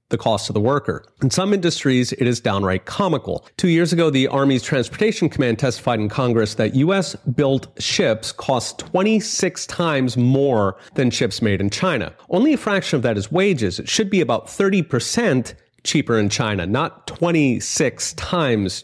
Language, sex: English, male